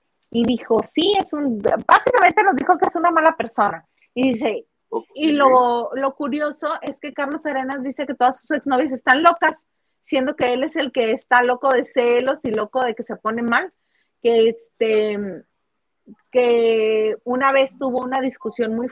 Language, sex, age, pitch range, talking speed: Spanish, female, 30-49, 225-285 Hz, 180 wpm